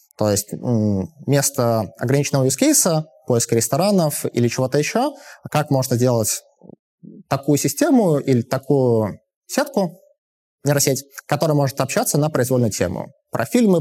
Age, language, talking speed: 20-39, Russian, 120 wpm